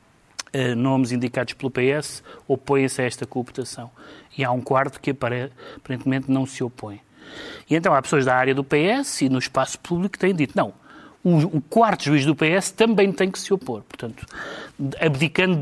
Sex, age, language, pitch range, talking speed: male, 30-49, Portuguese, 130-175 Hz, 175 wpm